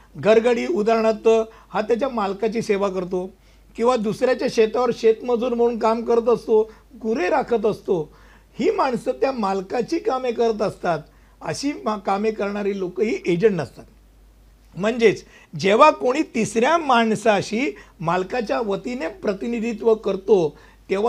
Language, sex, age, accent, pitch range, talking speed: Hindi, male, 60-79, native, 200-245 Hz, 95 wpm